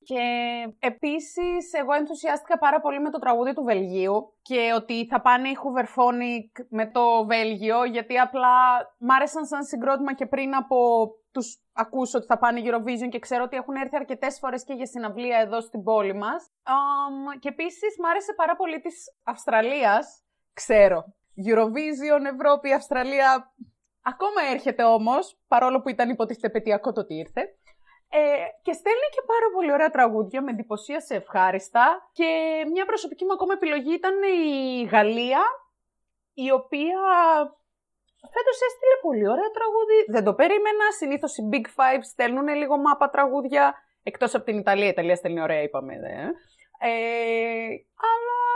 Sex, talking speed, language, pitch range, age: female, 150 wpm, Greek, 235-315 Hz, 20-39